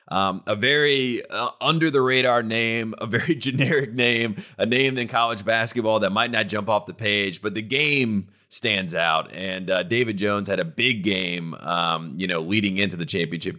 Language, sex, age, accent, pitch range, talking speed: English, male, 30-49, American, 95-120 Hz, 195 wpm